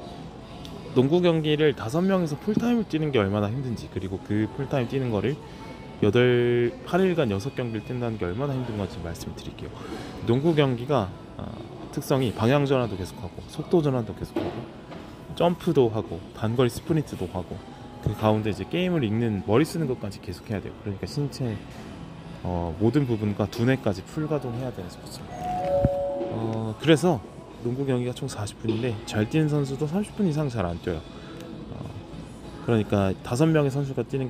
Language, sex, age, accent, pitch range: Korean, male, 20-39, native, 105-140 Hz